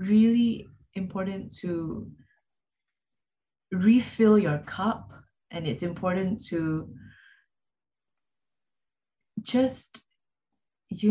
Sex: female